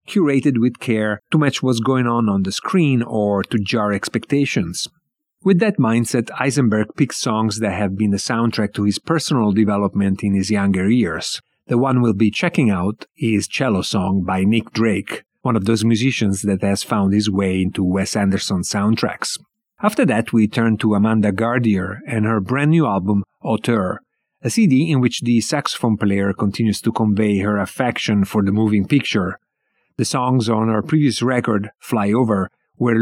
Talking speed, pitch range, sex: 175 wpm, 100-125 Hz, male